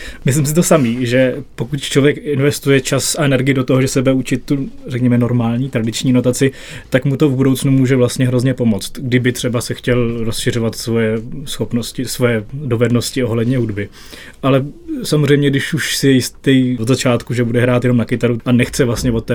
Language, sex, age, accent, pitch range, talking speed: Czech, male, 20-39, native, 120-130 Hz, 185 wpm